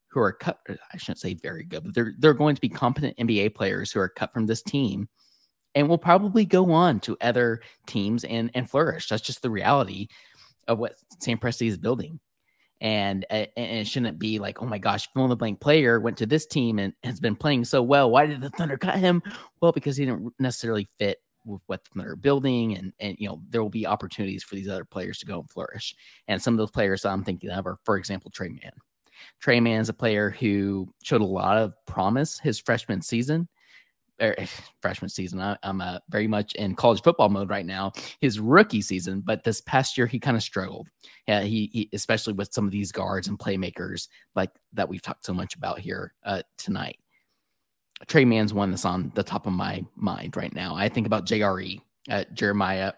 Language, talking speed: English, 215 wpm